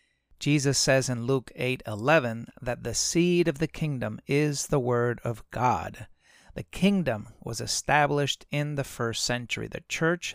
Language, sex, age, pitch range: English, male, 40-59, 120-155 Hz